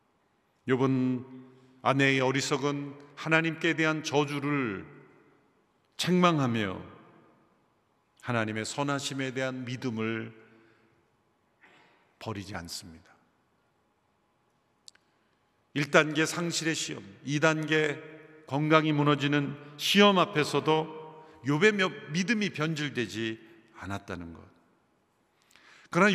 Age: 50-69